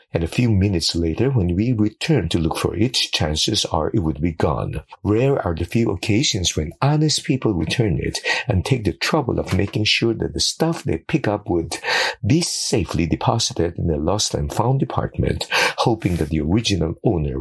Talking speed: 195 wpm